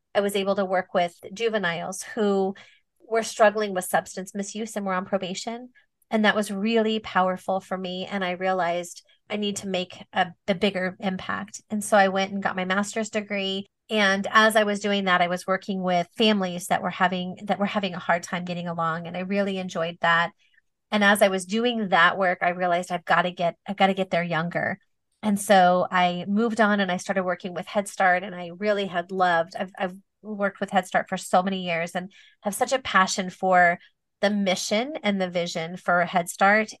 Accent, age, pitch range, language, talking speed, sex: American, 30-49, 180-210 Hz, English, 215 wpm, female